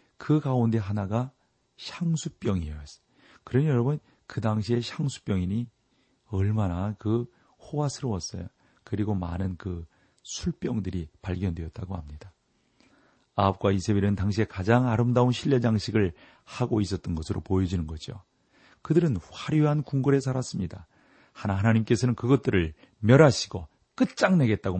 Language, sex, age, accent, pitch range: Korean, male, 40-59, native, 95-130 Hz